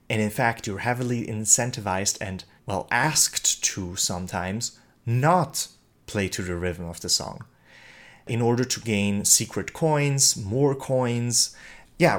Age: 30-49